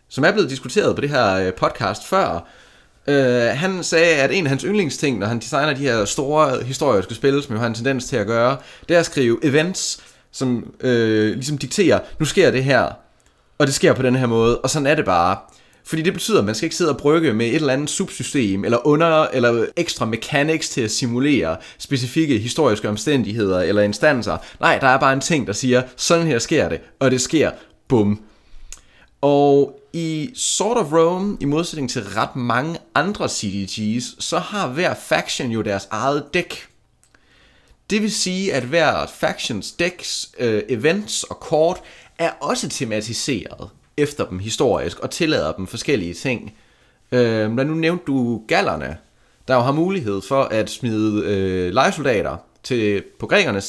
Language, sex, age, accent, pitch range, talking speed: Danish, male, 30-49, native, 115-155 Hz, 175 wpm